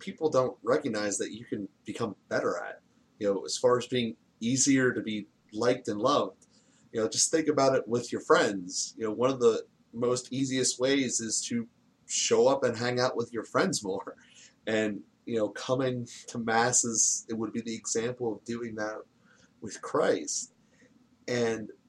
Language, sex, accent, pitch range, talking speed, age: English, male, American, 110-135 Hz, 180 wpm, 30-49